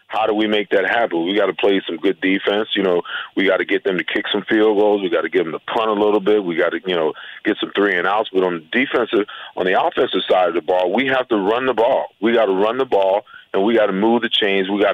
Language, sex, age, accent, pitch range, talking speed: English, male, 40-59, American, 95-115 Hz, 310 wpm